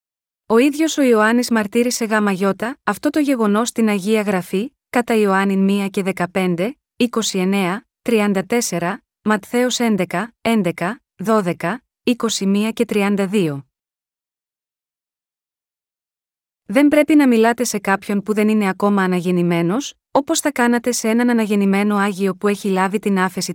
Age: 20-39